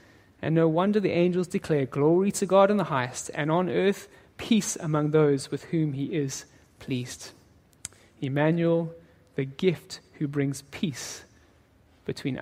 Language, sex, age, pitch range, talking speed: English, male, 30-49, 140-185 Hz, 145 wpm